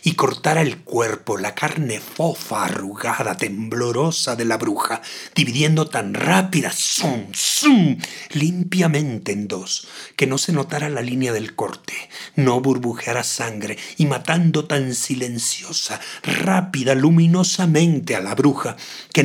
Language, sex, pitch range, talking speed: Spanish, male, 125-155 Hz, 130 wpm